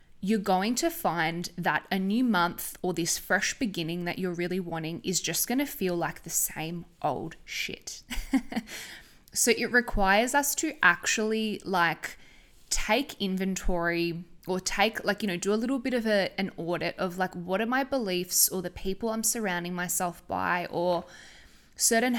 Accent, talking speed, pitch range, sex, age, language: Australian, 170 wpm, 175-220 Hz, female, 10-29, English